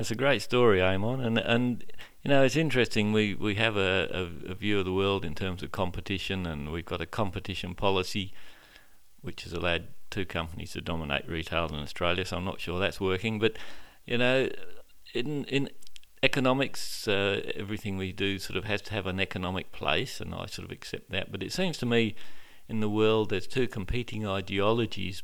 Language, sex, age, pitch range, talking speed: English, male, 50-69, 95-110 Hz, 195 wpm